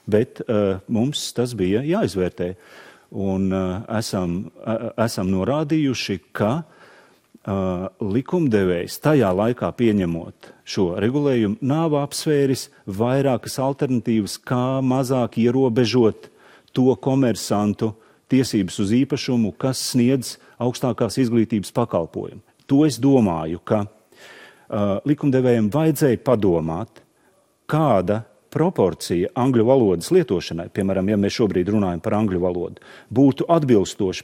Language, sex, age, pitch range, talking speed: English, male, 40-59, 100-140 Hz, 105 wpm